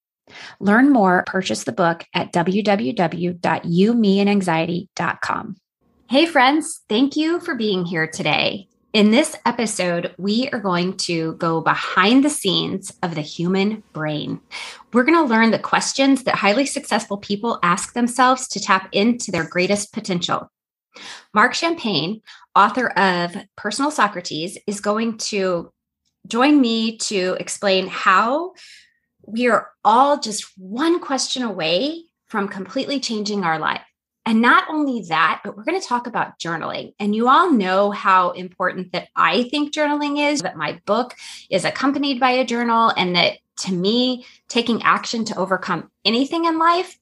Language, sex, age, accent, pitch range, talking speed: English, female, 20-39, American, 185-255 Hz, 145 wpm